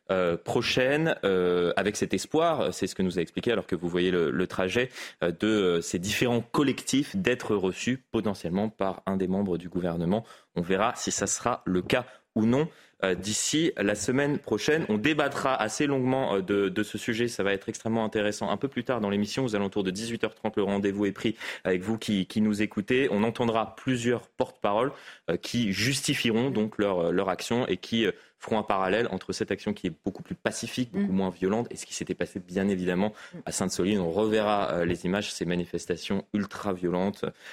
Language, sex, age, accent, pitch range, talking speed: French, male, 30-49, French, 100-125 Hz, 195 wpm